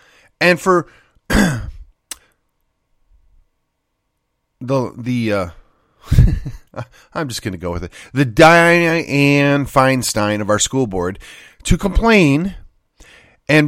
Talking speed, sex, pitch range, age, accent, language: 95 wpm, male, 115-160 Hz, 40-59, American, English